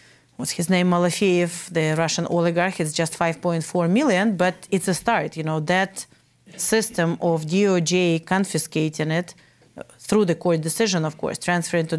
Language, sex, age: English, female, 40-59